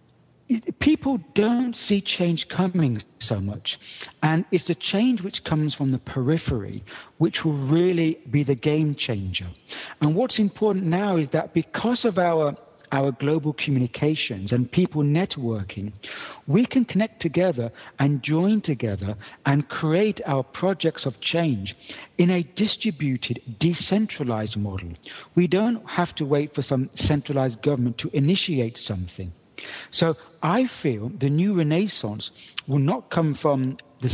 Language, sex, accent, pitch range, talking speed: English, male, British, 125-175 Hz, 140 wpm